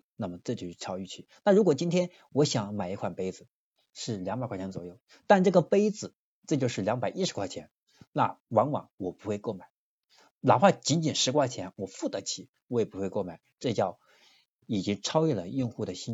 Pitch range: 100-150 Hz